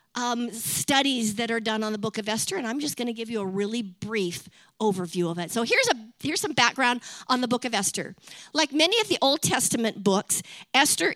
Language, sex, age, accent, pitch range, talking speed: English, female, 50-69, American, 200-270 Hz, 220 wpm